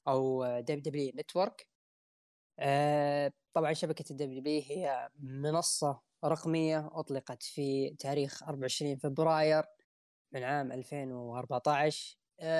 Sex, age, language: female, 10-29, Arabic